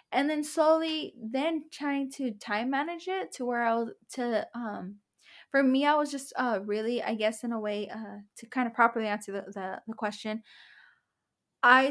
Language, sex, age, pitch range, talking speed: English, female, 10-29, 210-265 Hz, 185 wpm